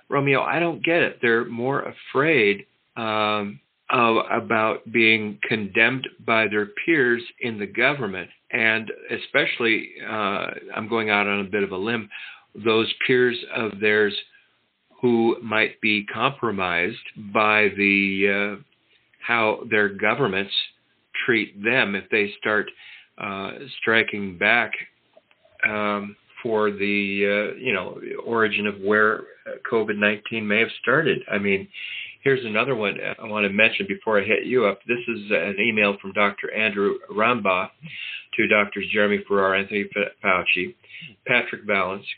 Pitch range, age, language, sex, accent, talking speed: 100-115 Hz, 50-69, English, male, American, 135 wpm